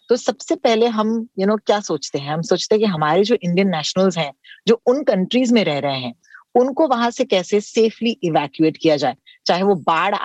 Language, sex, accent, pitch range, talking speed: Hindi, female, native, 165-230 Hz, 225 wpm